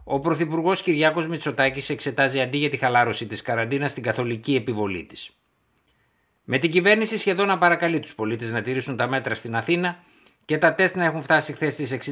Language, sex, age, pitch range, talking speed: Greek, male, 60-79, 115-155 Hz, 185 wpm